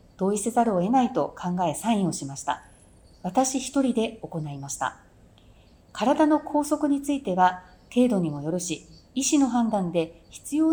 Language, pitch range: Japanese, 170-240 Hz